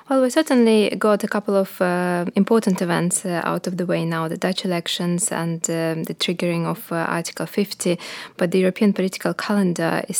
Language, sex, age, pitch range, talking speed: English, female, 20-39, 165-195 Hz, 195 wpm